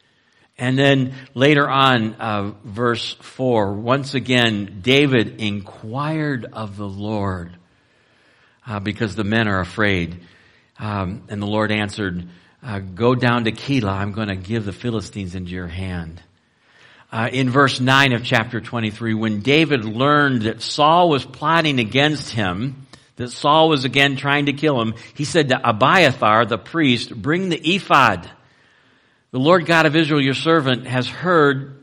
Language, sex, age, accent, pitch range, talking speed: English, male, 60-79, American, 115-155 Hz, 155 wpm